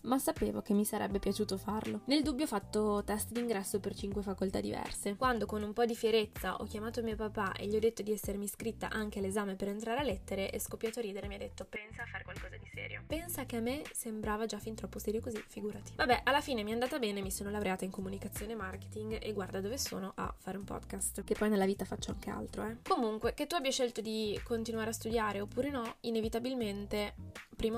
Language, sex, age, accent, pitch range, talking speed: Italian, female, 20-39, native, 200-230 Hz, 235 wpm